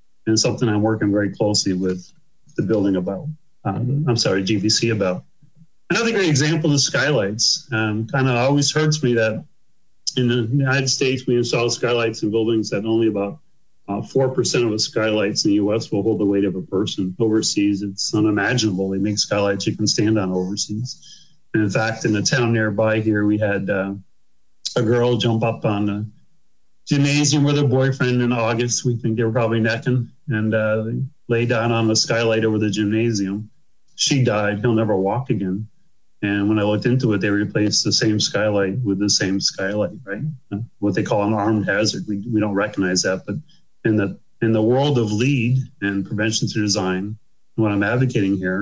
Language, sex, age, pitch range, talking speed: English, male, 40-59, 105-125 Hz, 190 wpm